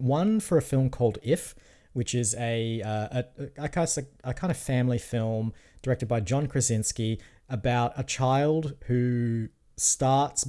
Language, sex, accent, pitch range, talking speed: English, male, Australian, 110-135 Hz, 150 wpm